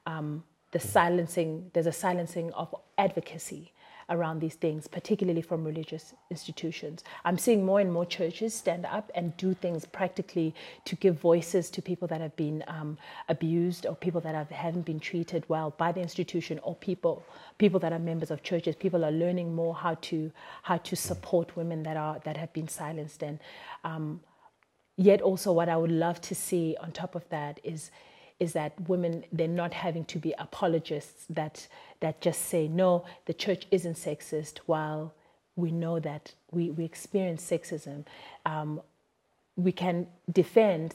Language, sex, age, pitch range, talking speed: English, female, 30-49, 155-175 Hz, 170 wpm